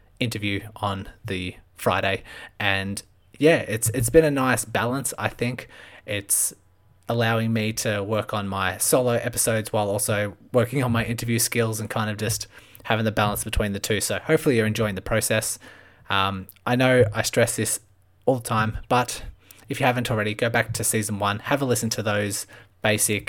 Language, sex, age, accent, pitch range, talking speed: English, male, 20-39, Australian, 105-115 Hz, 185 wpm